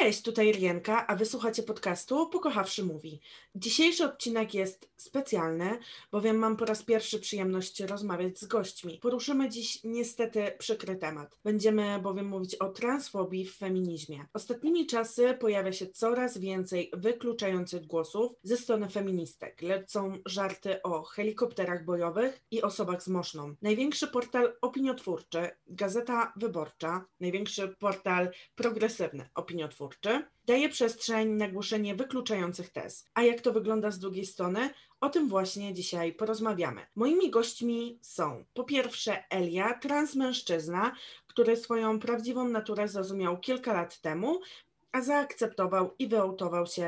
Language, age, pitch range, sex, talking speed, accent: Polish, 20-39, 185-235 Hz, female, 130 wpm, native